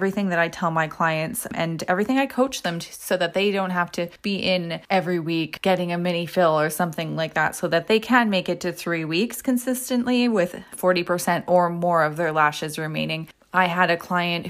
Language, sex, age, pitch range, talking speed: English, female, 20-39, 170-220 Hz, 210 wpm